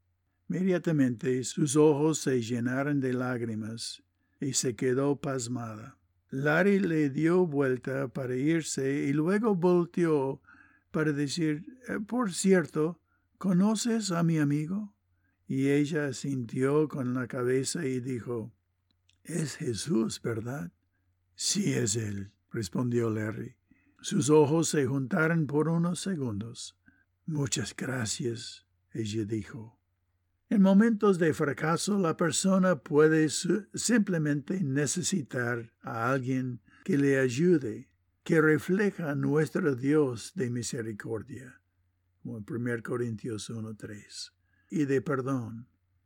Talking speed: 110 wpm